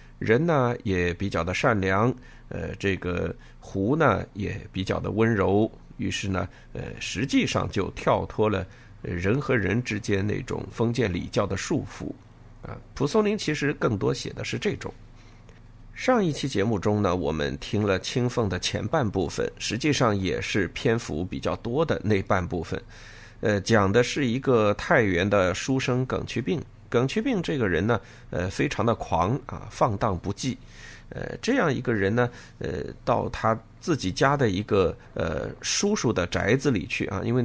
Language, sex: Chinese, male